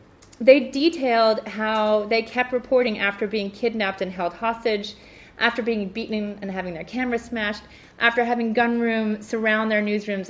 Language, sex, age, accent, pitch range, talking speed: English, female, 30-49, American, 200-250 Hz, 155 wpm